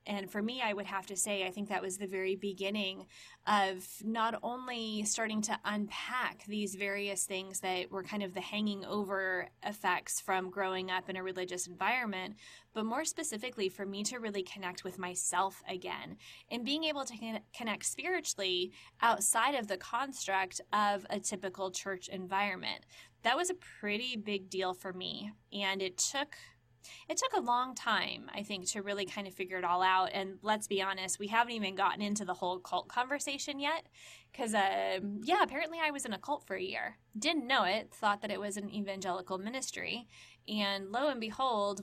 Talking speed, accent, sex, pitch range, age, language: 190 wpm, American, female, 190-225 Hz, 20-39, English